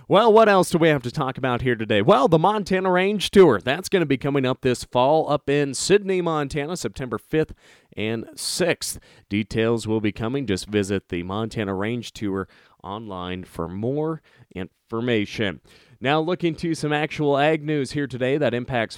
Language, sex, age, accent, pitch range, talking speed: English, male, 30-49, American, 110-145 Hz, 180 wpm